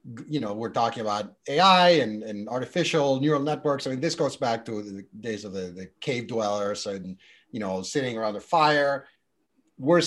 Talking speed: 190 wpm